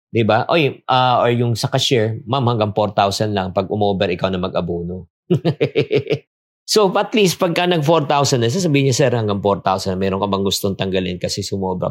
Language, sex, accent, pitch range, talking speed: English, male, Filipino, 100-130 Hz, 175 wpm